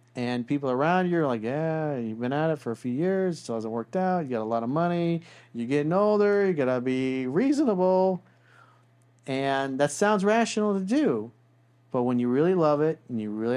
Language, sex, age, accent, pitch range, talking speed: English, male, 40-59, American, 115-145 Hz, 215 wpm